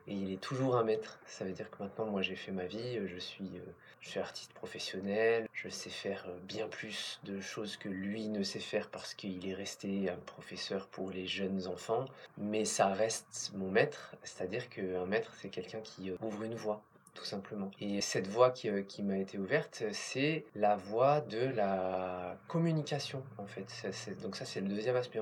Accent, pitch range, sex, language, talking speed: French, 95-120 Hz, male, French, 200 wpm